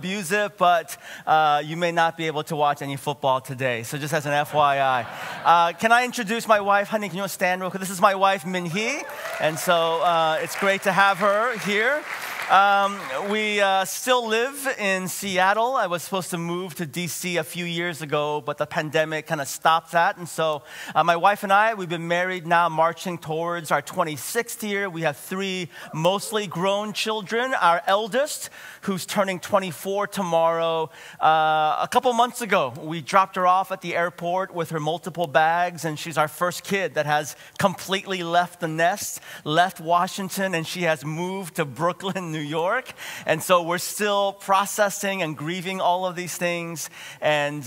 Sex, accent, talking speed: male, American, 185 wpm